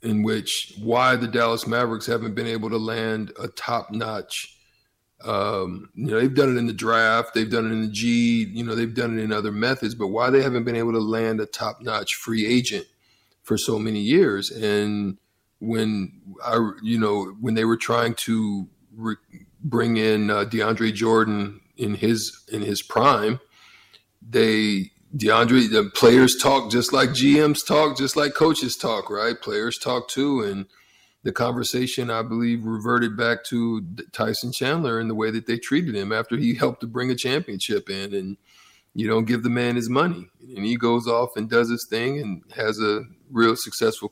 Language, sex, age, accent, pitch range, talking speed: English, male, 50-69, American, 110-120 Hz, 185 wpm